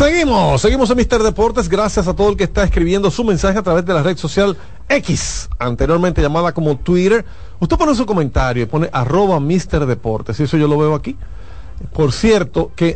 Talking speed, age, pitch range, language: 195 wpm, 40-59, 145-195 Hz, Spanish